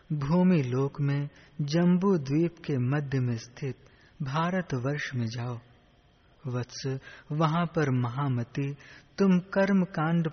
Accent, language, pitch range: native, Hindi, 125-160 Hz